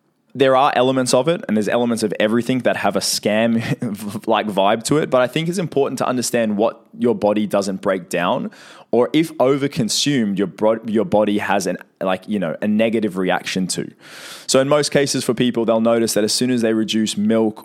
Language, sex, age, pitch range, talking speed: English, male, 20-39, 100-130 Hz, 205 wpm